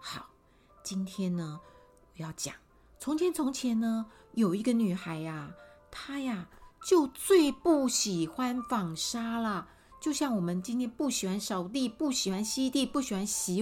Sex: female